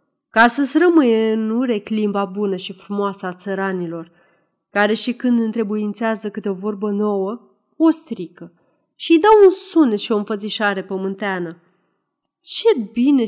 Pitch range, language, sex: 185-280 Hz, Romanian, female